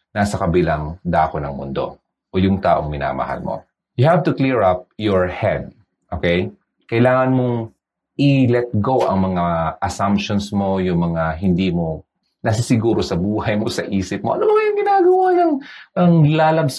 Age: 30-49